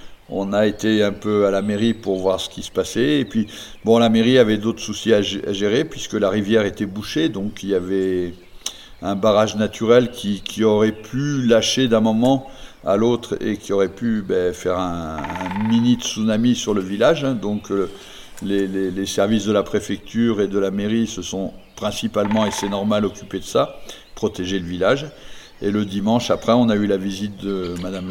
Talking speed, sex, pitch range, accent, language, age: 200 wpm, male, 95-115 Hz, French, French, 60-79